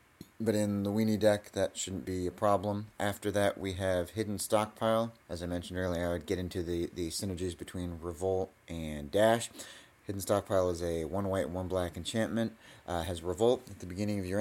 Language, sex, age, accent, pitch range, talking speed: English, male, 30-49, American, 90-110 Hz, 205 wpm